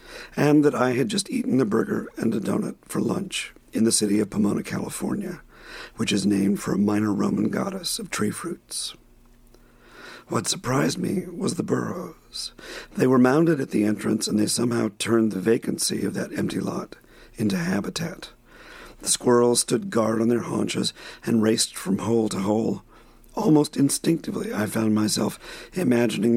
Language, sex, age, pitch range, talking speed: English, male, 50-69, 110-125 Hz, 165 wpm